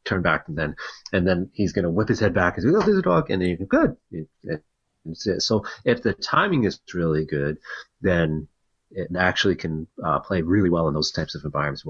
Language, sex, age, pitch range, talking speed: English, male, 30-49, 80-95 Hz, 230 wpm